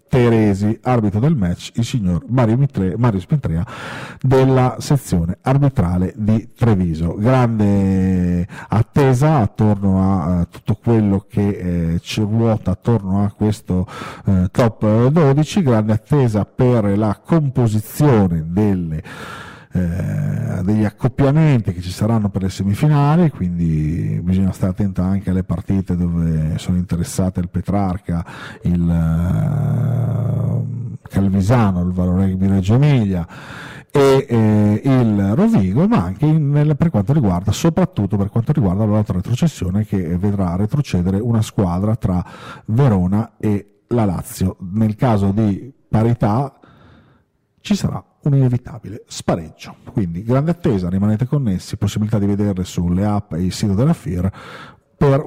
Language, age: Italian, 40-59